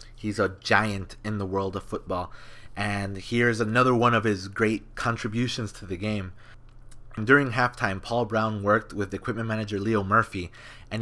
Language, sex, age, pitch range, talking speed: English, male, 20-39, 105-125 Hz, 165 wpm